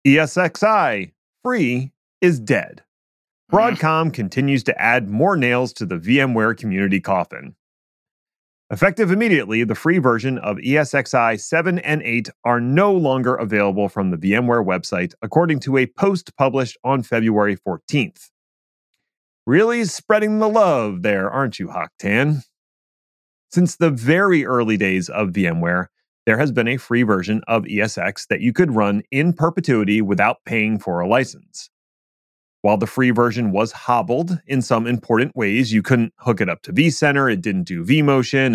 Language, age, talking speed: English, 30-49, 150 wpm